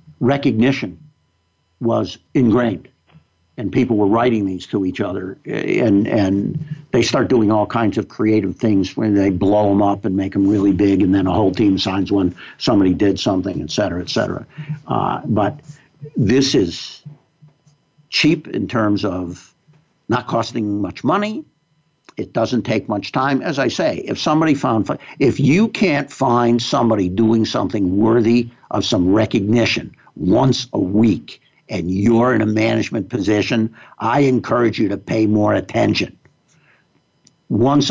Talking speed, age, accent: 150 wpm, 60-79, American